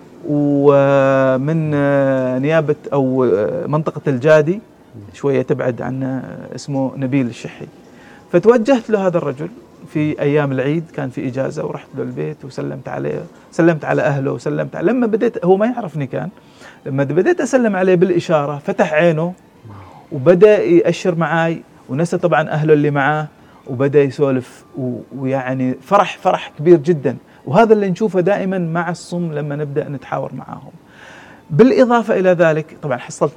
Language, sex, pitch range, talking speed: Arabic, male, 140-205 Hz, 135 wpm